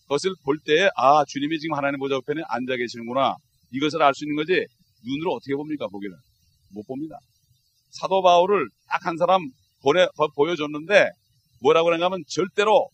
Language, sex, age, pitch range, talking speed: English, male, 40-59, 140-185 Hz, 135 wpm